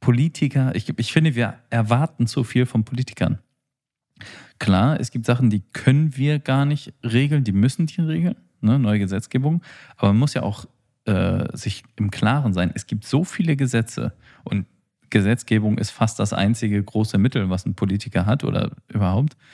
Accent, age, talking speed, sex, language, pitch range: German, 40-59, 170 wpm, male, German, 100-130 Hz